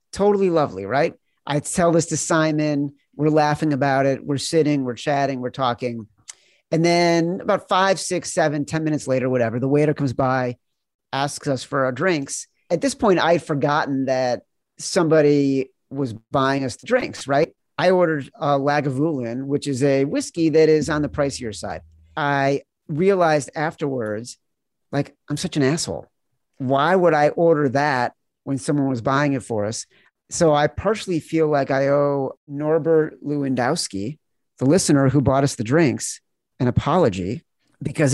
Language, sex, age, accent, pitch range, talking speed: English, male, 40-59, American, 125-155 Hz, 165 wpm